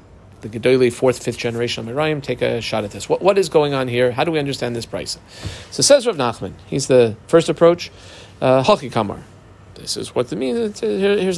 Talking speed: 215 wpm